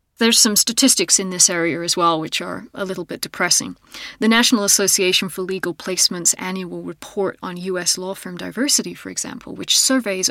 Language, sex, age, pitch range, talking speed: English, female, 30-49, 180-220 Hz, 180 wpm